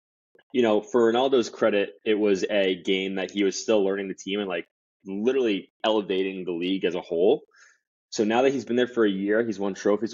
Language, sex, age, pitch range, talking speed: English, male, 20-39, 85-105 Hz, 220 wpm